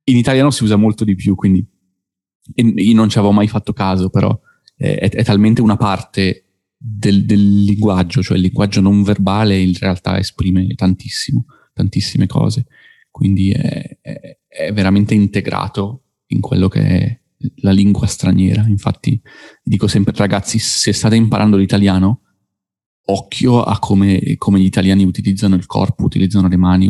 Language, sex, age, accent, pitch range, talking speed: Italian, male, 30-49, native, 95-110 Hz, 150 wpm